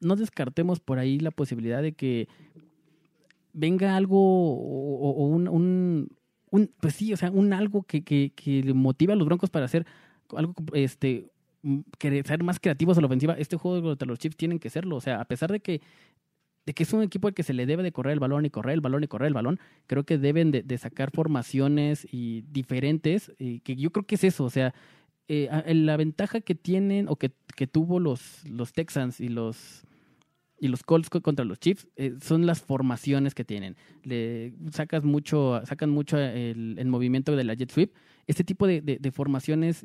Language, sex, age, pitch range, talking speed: Spanish, male, 20-39, 135-165 Hz, 205 wpm